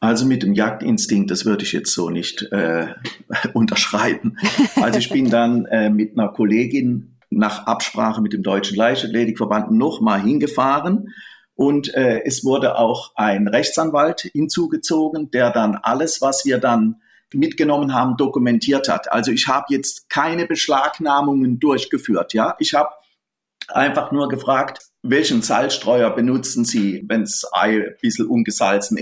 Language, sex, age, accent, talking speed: German, male, 40-59, German, 145 wpm